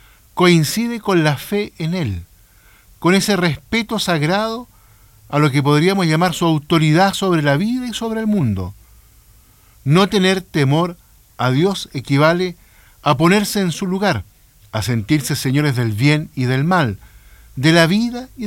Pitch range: 110-180 Hz